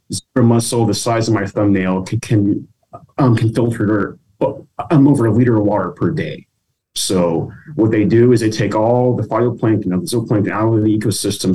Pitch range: 100-125 Hz